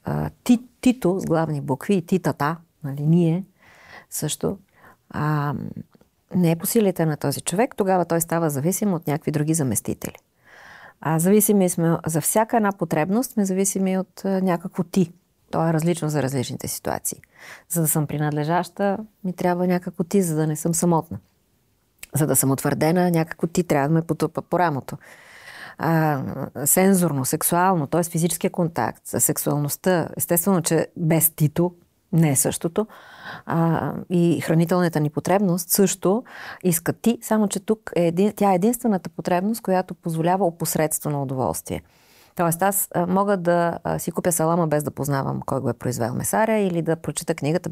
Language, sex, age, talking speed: Bulgarian, female, 40-59, 150 wpm